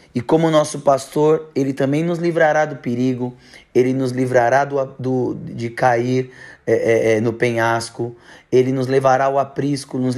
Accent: Brazilian